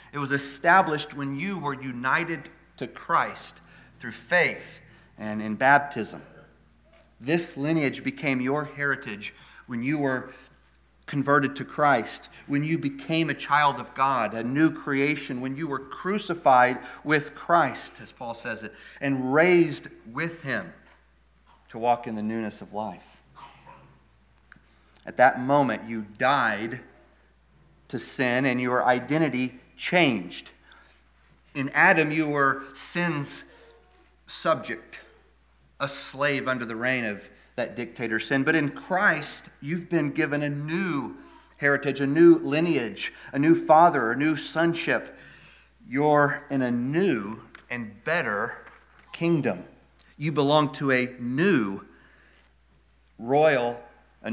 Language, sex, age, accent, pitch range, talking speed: English, male, 40-59, American, 115-150 Hz, 125 wpm